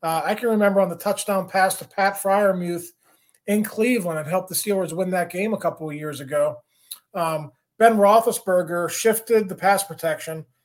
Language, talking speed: English, 180 wpm